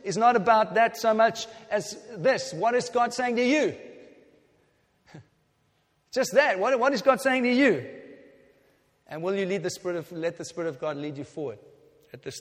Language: English